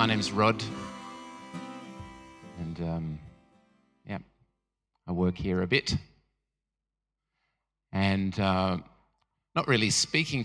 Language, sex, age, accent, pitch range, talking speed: English, male, 30-49, Australian, 90-120 Hz, 90 wpm